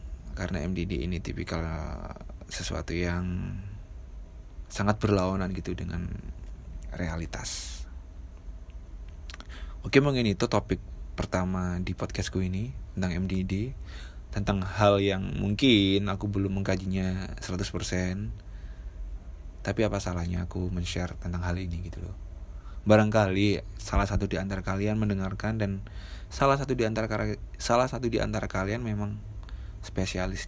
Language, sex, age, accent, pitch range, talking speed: Indonesian, male, 20-39, native, 80-100 Hz, 115 wpm